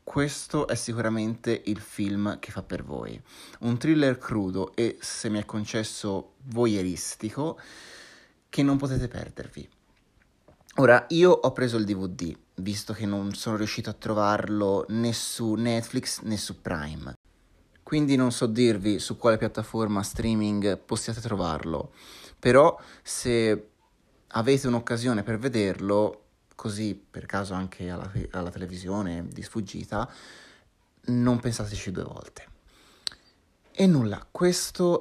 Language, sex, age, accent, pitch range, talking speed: Italian, male, 30-49, native, 100-120 Hz, 125 wpm